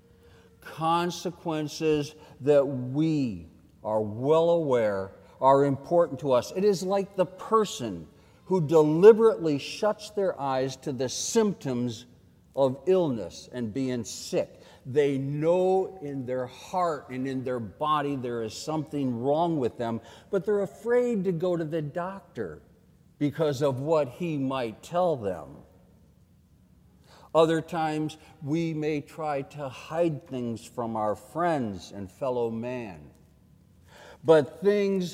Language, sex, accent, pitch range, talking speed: English, male, American, 125-170 Hz, 125 wpm